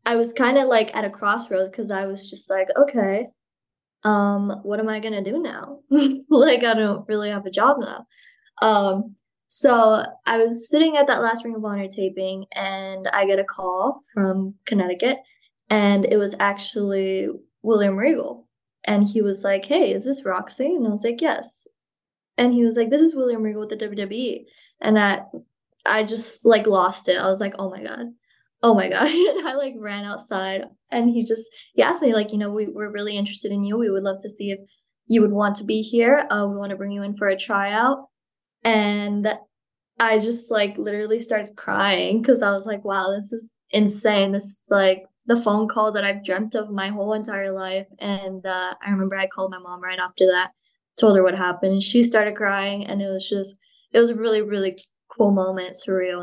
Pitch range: 195-230 Hz